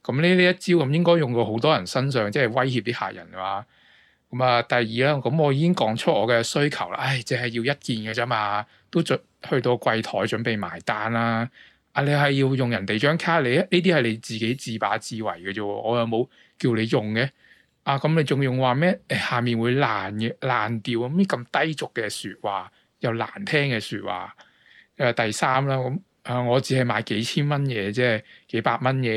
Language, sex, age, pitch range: Chinese, male, 20-39, 115-140 Hz